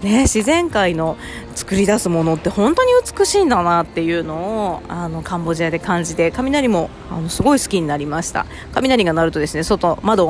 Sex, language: female, Japanese